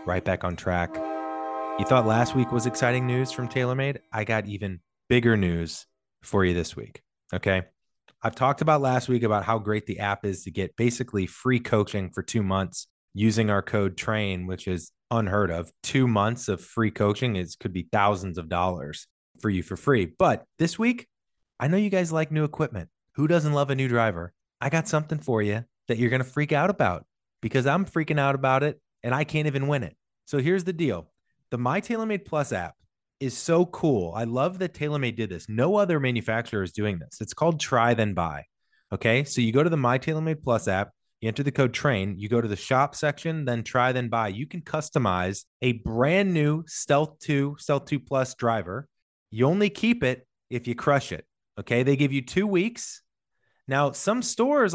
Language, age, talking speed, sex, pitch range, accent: English, 20-39, 205 wpm, male, 105-145 Hz, American